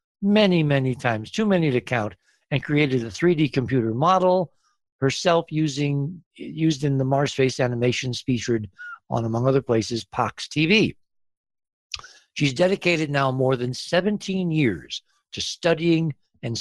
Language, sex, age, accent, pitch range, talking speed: English, male, 60-79, American, 120-165 Hz, 135 wpm